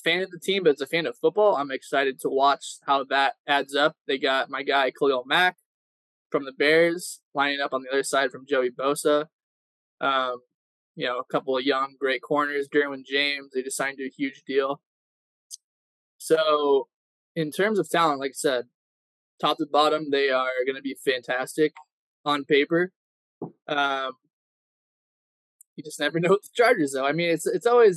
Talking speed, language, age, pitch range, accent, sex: 185 wpm, English, 20-39, 130-160 Hz, American, male